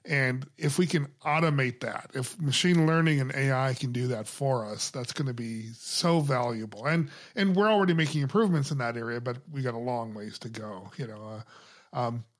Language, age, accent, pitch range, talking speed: English, 40-59, American, 125-160 Hz, 210 wpm